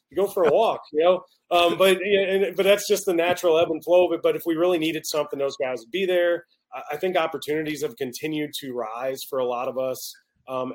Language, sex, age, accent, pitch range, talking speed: English, male, 30-49, American, 135-205 Hz, 250 wpm